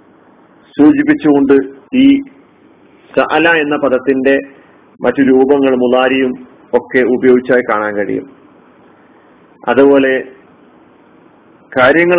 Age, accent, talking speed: 40-59, native, 70 wpm